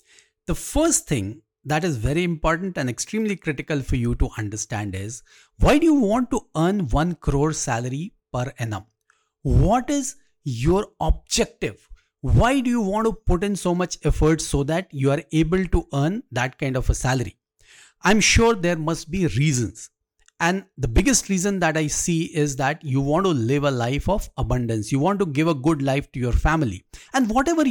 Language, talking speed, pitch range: English, 190 wpm, 140-215 Hz